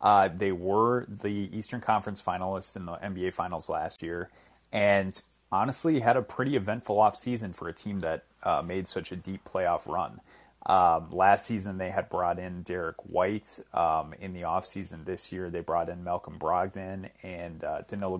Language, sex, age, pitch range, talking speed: English, male, 30-49, 90-110 Hz, 185 wpm